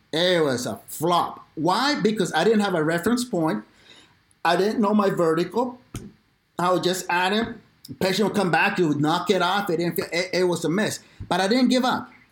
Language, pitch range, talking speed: English, 165-215 Hz, 220 wpm